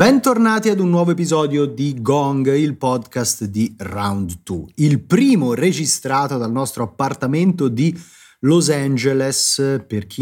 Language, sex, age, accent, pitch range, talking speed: Italian, male, 30-49, native, 105-150 Hz, 135 wpm